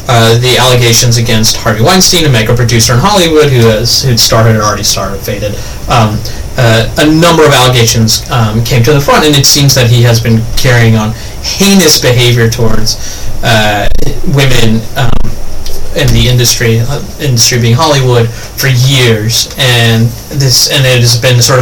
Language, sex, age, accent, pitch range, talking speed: English, male, 30-49, American, 115-145 Hz, 170 wpm